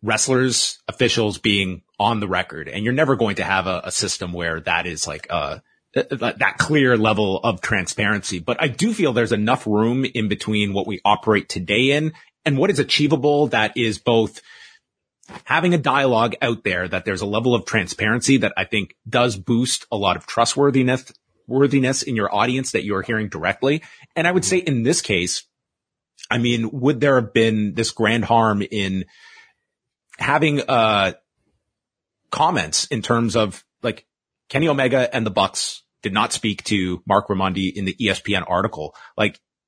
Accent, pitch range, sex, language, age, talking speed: American, 100-135 Hz, male, English, 30-49, 180 wpm